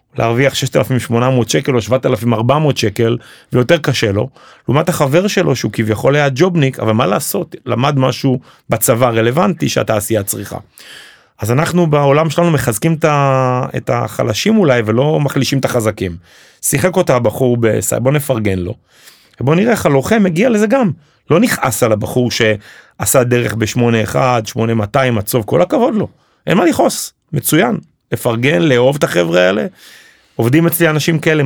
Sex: male